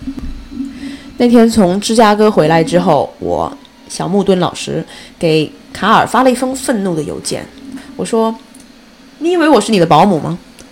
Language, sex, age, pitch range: Chinese, female, 20-39, 190-275 Hz